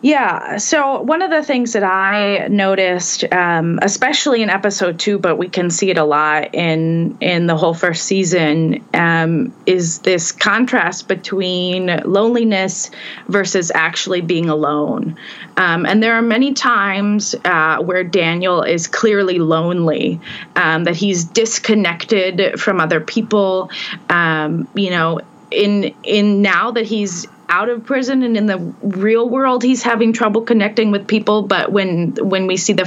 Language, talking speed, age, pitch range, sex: English, 155 wpm, 20-39, 170-210 Hz, female